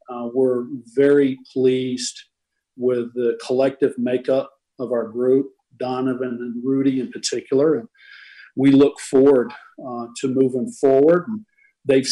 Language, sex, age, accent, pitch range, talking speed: English, male, 50-69, American, 125-140 Hz, 125 wpm